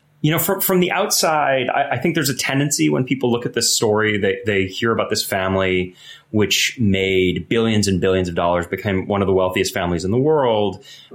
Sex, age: male, 30-49